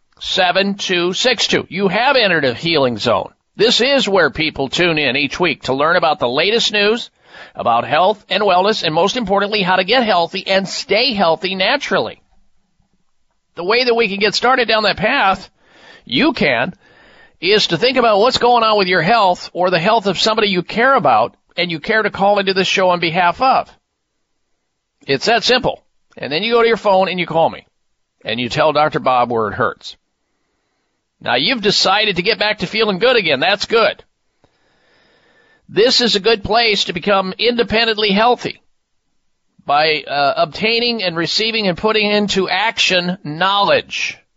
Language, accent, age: English, American, 50-69